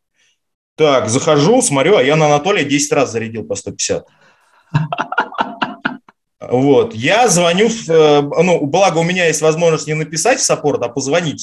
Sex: male